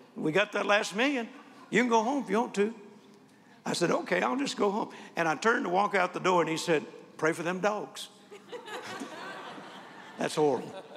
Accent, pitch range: American, 180-225 Hz